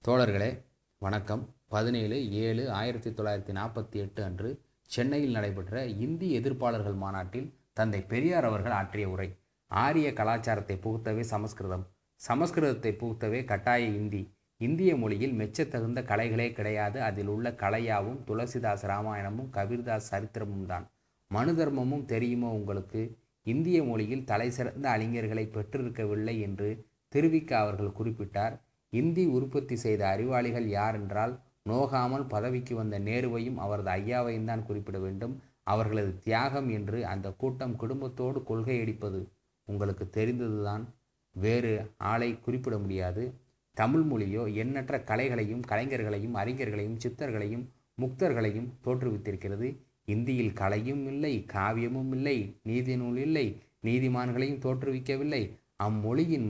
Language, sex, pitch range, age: Tamil, male, 105-125 Hz, 30-49